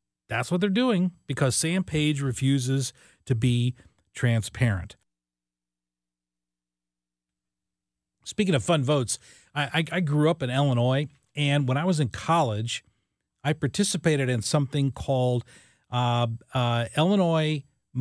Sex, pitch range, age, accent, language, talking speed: male, 120-165 Hz, 40-59, American, English, 120 wpm